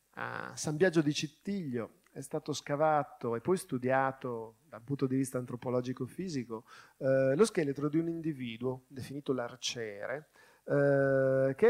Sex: male